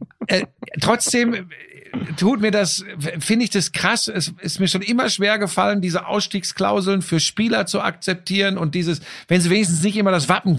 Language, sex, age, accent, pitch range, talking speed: German, male, 50-69, German, 160-215 Hz, 175 wpm